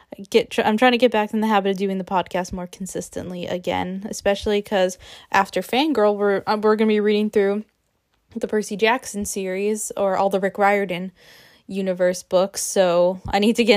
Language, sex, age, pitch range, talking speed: English, female, 10-29, 185-220 Hz, 185 wpm